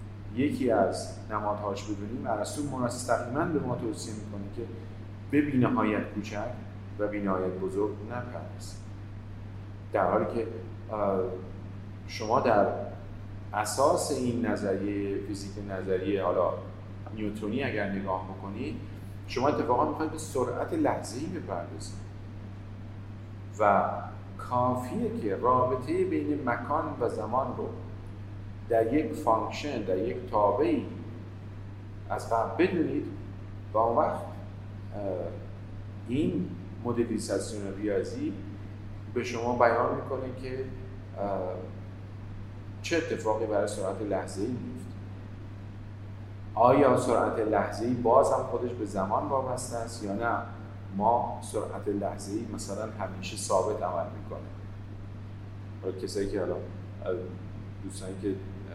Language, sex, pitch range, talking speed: Persian, male, 100-105 Hz, 100 wpm